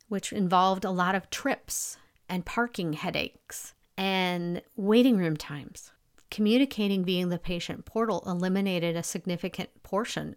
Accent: American